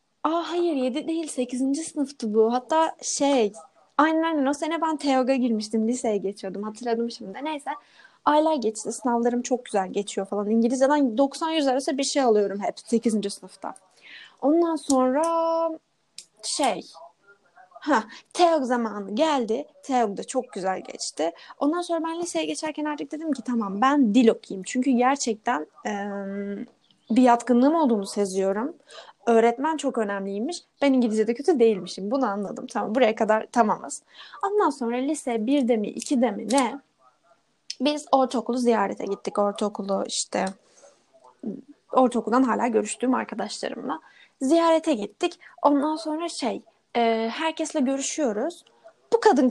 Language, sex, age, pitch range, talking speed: Turkish, female, 10-29, 220-300 Hz, 130 wpm